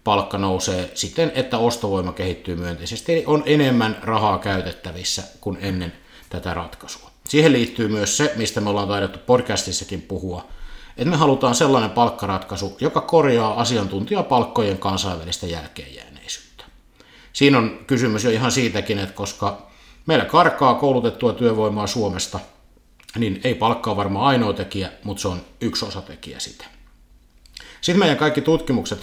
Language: Finnish